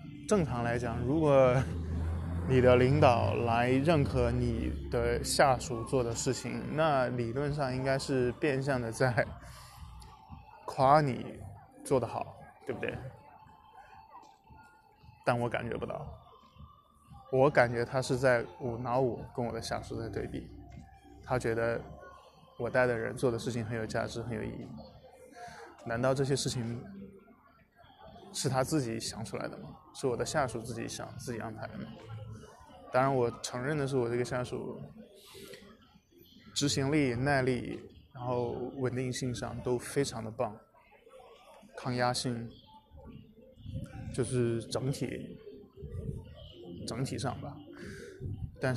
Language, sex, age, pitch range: Chinese, male, 20-39, 115-130 Hz